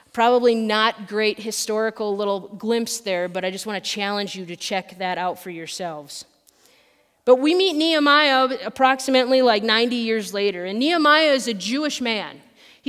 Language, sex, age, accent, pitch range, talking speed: English, female, 30-49, American, 215-260 Hz, 170 wpm